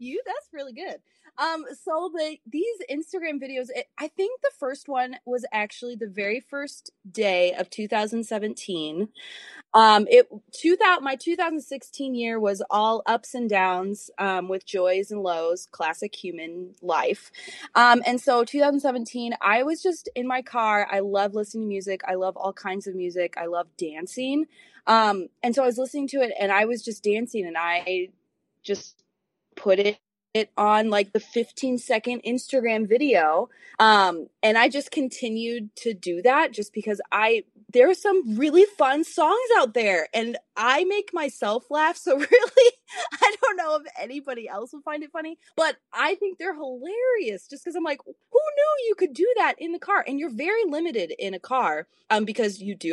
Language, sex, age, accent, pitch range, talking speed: English, female, 20-39, American, 205-300 Hz, 180 wpm